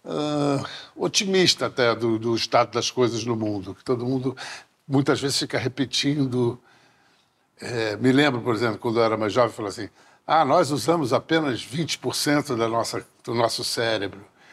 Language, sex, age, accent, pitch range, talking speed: English, male, 60-79, Brazilian, 120-150 Hz, 165 wpm